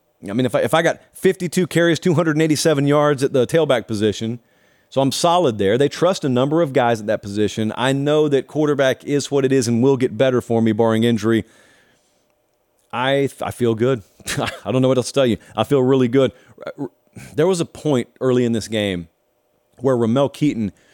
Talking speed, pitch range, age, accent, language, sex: 205 wpm, 110-140 Hz, 40-59, American, English, male